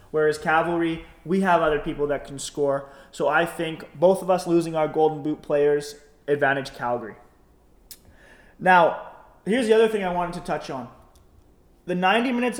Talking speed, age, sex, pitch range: 165 wpm, 20-39, male, 145-175 Hz